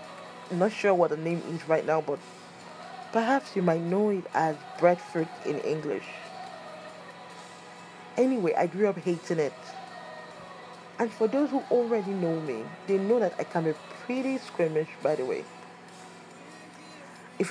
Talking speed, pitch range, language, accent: 150 wpm, 165-235 Hz, English, Nigerian